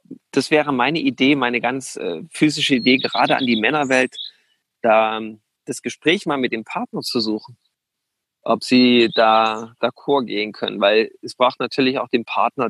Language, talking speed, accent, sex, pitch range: German, 165 wpm, German, male, 120-155 Hz